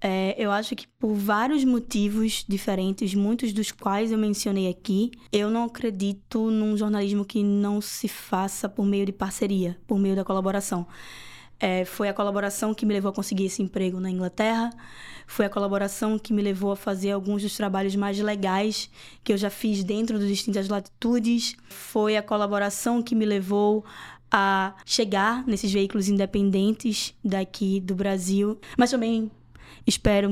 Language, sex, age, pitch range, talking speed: Portuguese, female, 10-29, 200-235 Hz, 160 wpm